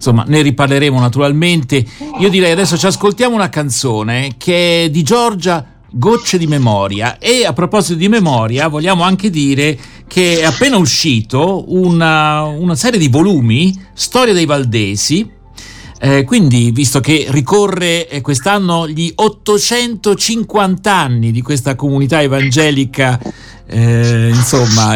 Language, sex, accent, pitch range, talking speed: Italian, male, native, 135-185 Hz, 125 wpm